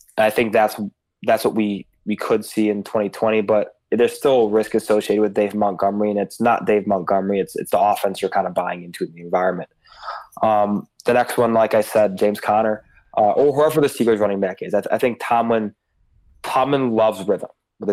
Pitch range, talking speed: 100-110 Hz, 205 wpm